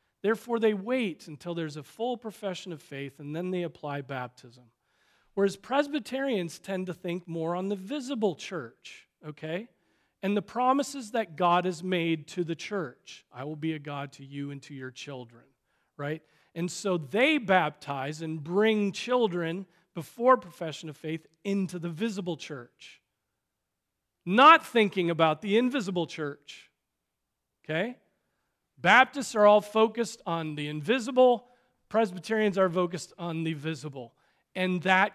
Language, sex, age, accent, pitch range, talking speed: English, male, 40-59, American, 155-210 Hz, 145 wpm